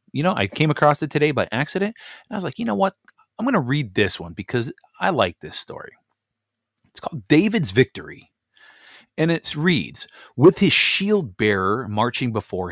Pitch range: 100-140 Hz